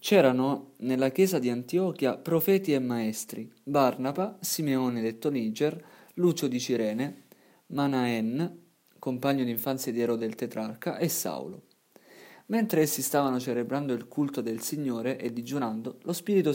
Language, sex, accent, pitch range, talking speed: Italian, male, native, 120-150 Hz, 135 wpm